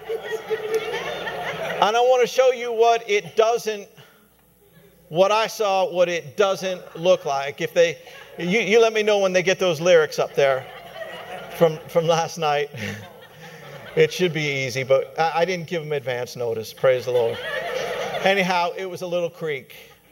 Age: 50-69